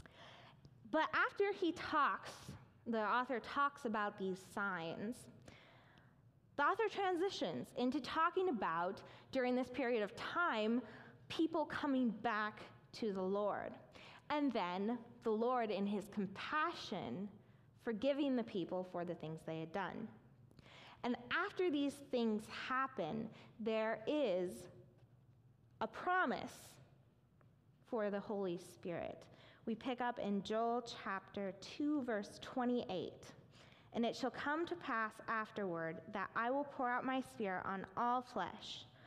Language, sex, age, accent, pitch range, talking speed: English, female, 20-39, American, 180-255 Hz, 125 wpm